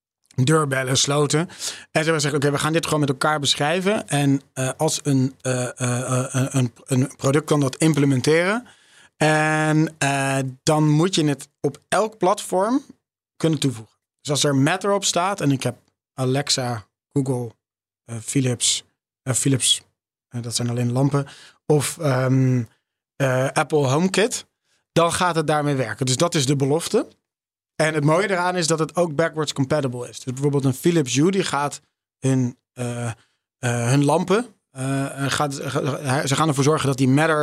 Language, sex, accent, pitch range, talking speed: Dutch, male, Dutch, 130-155 Hz, 160 wpm